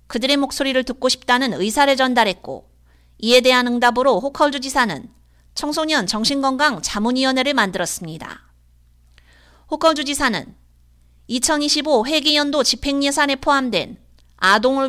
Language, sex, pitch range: Korean, female, 210-285 Hz